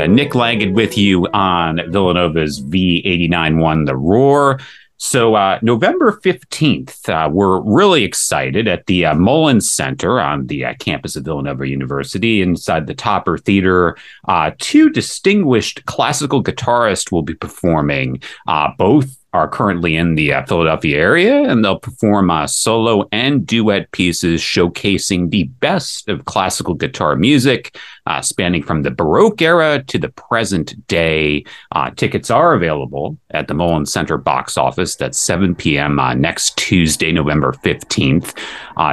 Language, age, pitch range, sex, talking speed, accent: English, 40-59, 80-125 Hz, male, 145 wpm, American